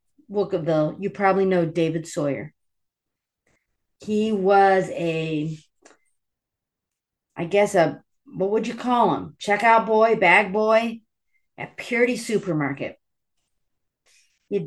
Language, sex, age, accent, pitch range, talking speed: English, female, 40-59, American, 180-245 Hz, 100 wpm